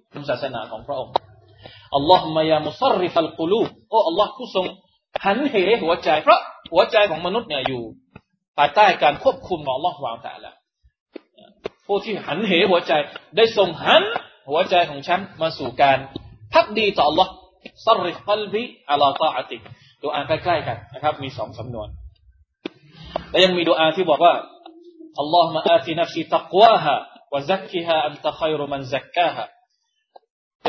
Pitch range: 140-205 Hz